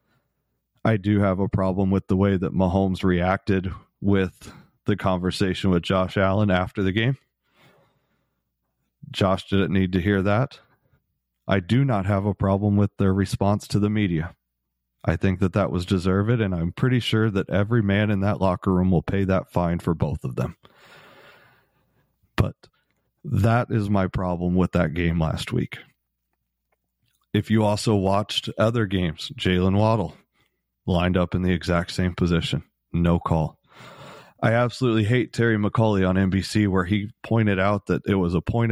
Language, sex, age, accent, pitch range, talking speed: English, male, 30-49, American, 90-110 Hz, 165 wpm